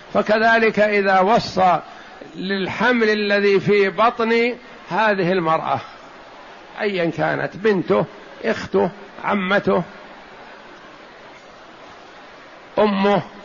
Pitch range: 185-220 Hz